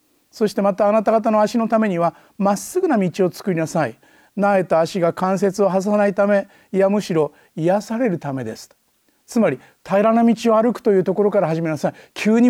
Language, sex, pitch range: Japanese, male, 165-225 Hz